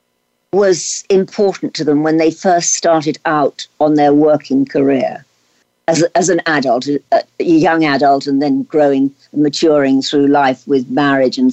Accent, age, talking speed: British, 60-79, 165 wpm